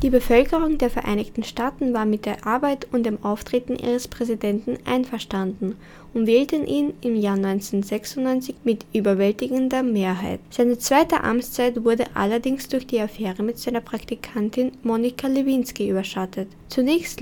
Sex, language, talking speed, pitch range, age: female, German, 135 wpm, 210-255 Hz, 10-29